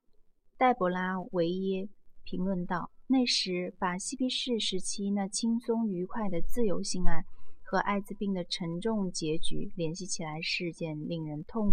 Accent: native